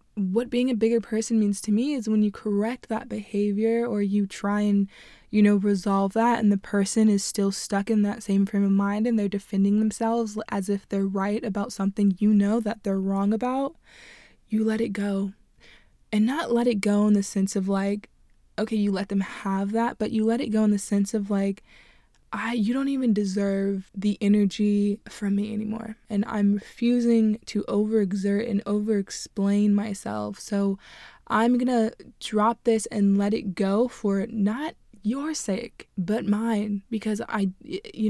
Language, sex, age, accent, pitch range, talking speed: English, female, 20-39, American, 200-220 Hz, 185 wpm